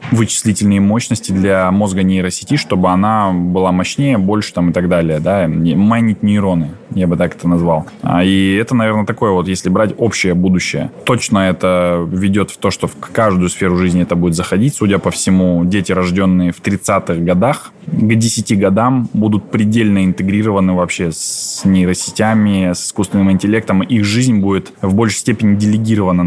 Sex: male